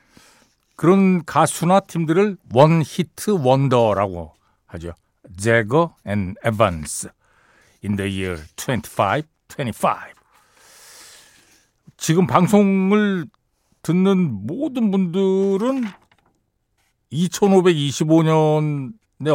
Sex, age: male, 60-79